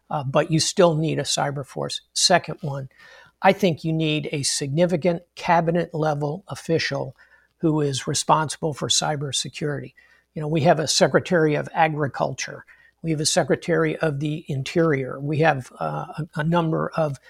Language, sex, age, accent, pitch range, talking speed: English, male, 50-69, American, 150-165 Hz, 155 wpm